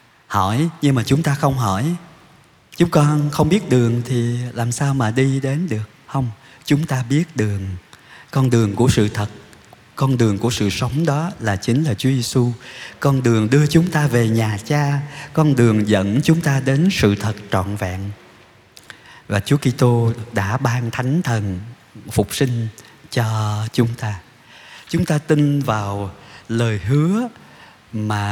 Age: 20-39